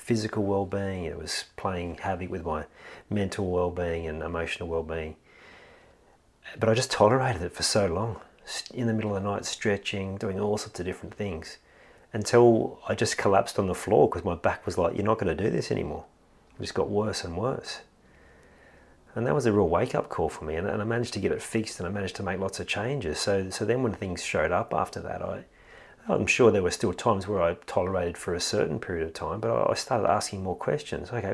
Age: 40-59